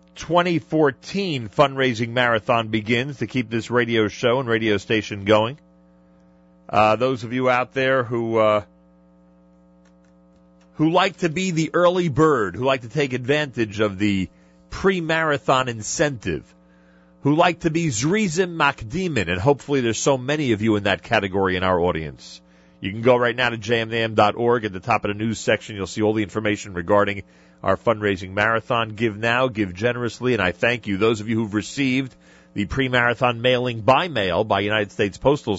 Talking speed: 175 wpm